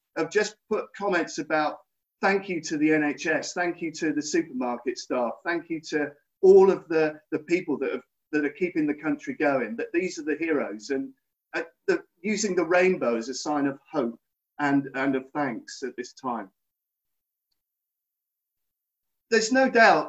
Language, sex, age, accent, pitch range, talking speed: English, male, 50-69, British, 145-235 Hz, 175 wpm